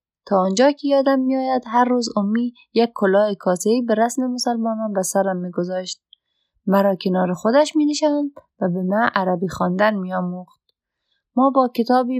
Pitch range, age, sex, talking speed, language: 185-240 Hz, 30-49, female, 150 wpm, Persian